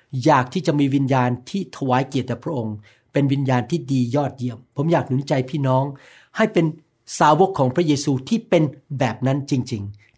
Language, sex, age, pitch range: Thai, male, 60-79, 130-195 Hz